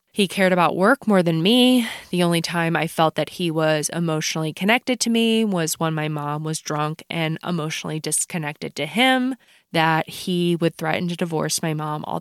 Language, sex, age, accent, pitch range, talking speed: English, female, 20-39, American, 165-215 Hz, 190 wpm